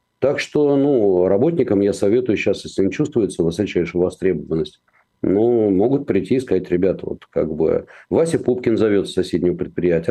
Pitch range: 100-150 Hz